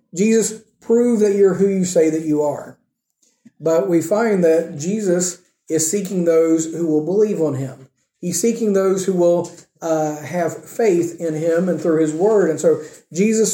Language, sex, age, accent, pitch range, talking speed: English, male, 40-59, American, 165-200 Hz, 175 wpm